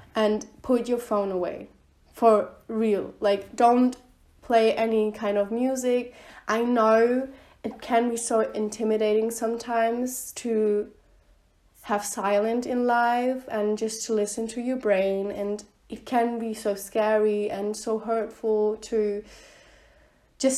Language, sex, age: English, female, 20-39